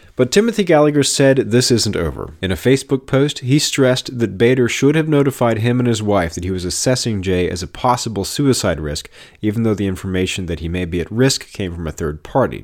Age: 40-59